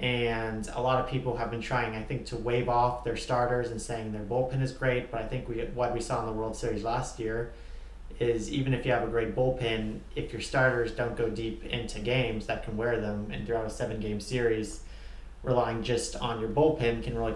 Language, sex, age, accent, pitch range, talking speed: English, male, 30-49, American, 110-125 Hz, 225 wpm